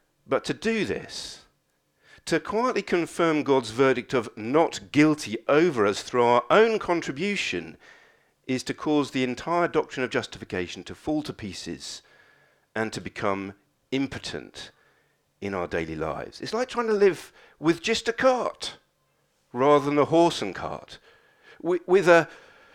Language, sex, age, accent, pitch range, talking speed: English, male, 50-69, British, 110-165 Hz, 140 wpm